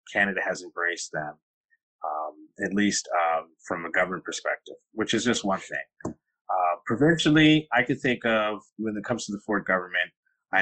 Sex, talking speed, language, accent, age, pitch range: male, 175 wpm, English, American, 30-49, 90-125 Hz